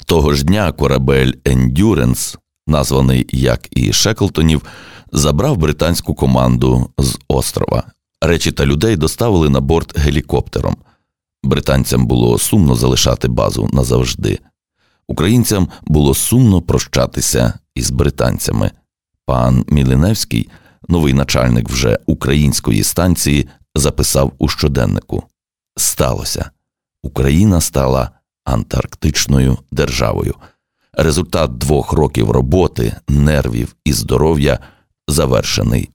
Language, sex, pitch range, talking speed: Ukrainian, male, 65-80 Hz, 95 wpm